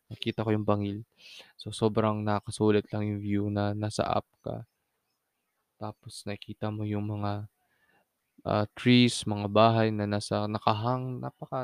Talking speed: 140 wpm